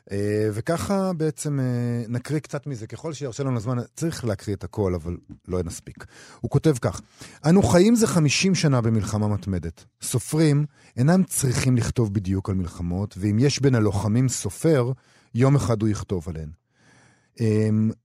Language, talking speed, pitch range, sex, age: Hebrew, 155 wpm, 100-130 Hz, male, 40-59